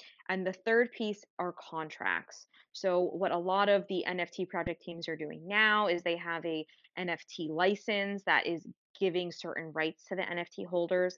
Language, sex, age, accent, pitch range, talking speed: English, female, 20-39, American, 170-200 Hz, 175 wpm